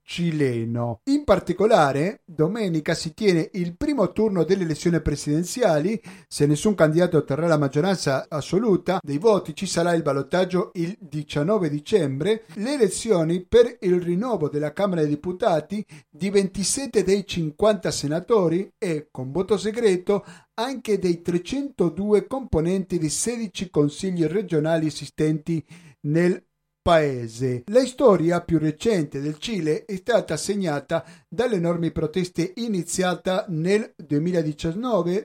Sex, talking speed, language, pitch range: male, 125 wpm, Italian, 155-200 Hz